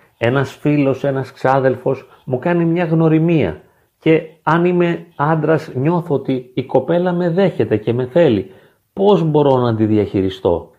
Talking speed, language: 145 wpm, Greek